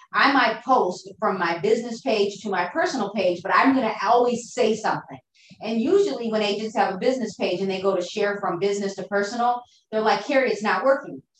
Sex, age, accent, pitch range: female, 30-49, American, 195-245 Hz